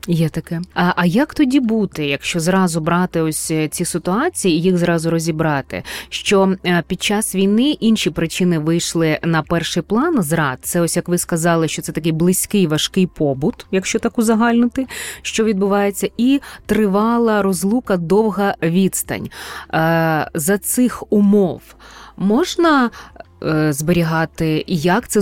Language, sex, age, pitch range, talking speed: Ukrainian, female, 20-39, 170-210 Hz, 135 wpm